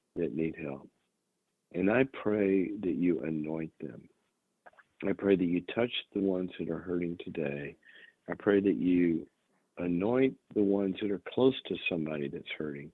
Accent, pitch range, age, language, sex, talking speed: American, 80-95 Hz, 50-69, English, male, 160 wpm